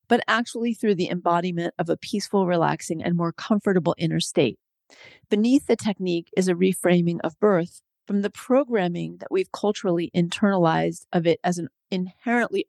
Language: English